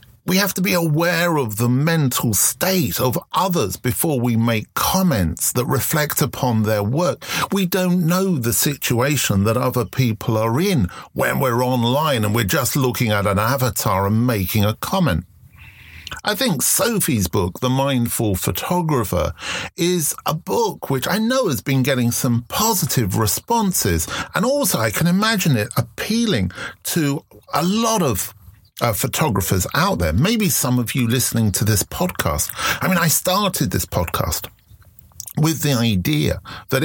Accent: British